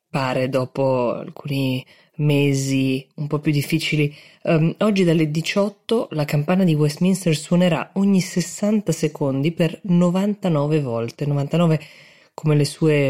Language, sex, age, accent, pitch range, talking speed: Italian, female, 20-39, native, 140-180 Hz, 120 wpm